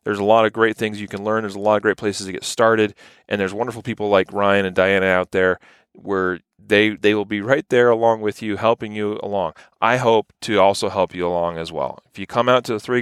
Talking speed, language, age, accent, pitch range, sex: 265 wpm, English, 30-49, American, 95-110 Hz, male